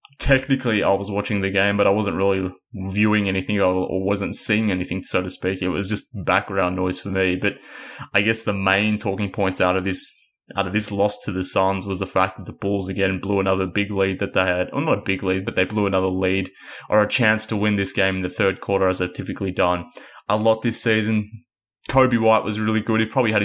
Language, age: English, 20-39